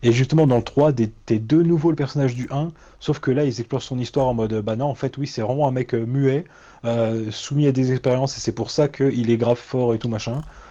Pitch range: 110-140 Hz